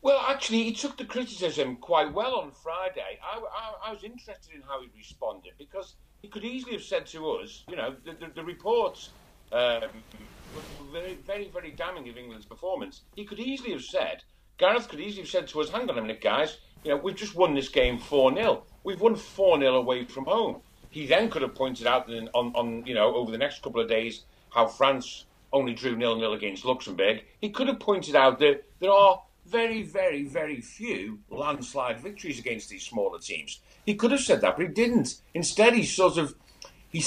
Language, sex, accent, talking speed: English, male, British, 210 wpm